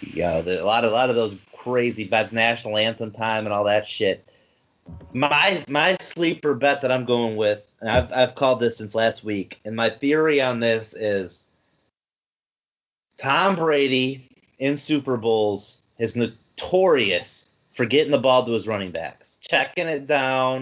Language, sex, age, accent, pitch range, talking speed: English, male, 30-49, American, 115-145 Hz, 170 wpm